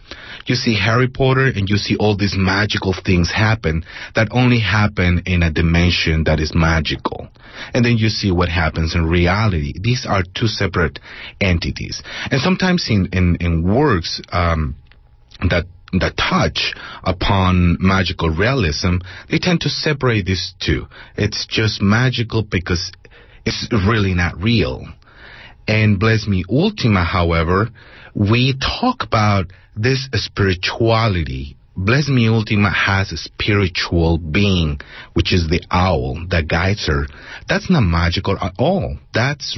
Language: English